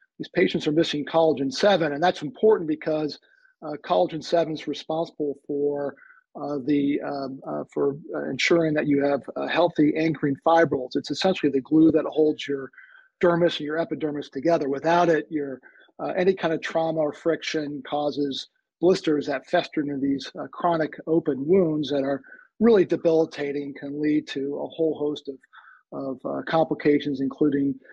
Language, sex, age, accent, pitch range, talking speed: English, male, 50-69, American, 145-165 Hz, 165 wpm